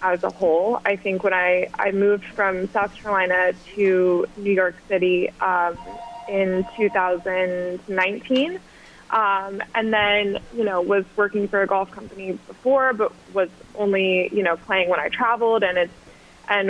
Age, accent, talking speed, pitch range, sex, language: 20-39, American, 155 wpm, 185-210 Hz, female, English